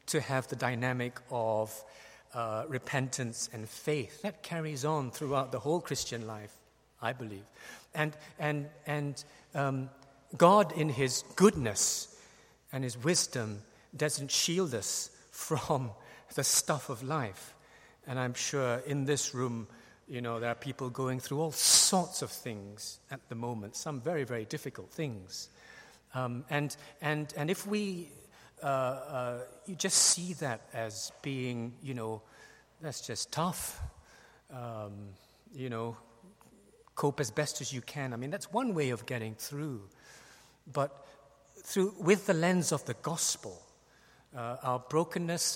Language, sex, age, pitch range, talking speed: English, male, 50-69, 120-150 Hz, 150 wpm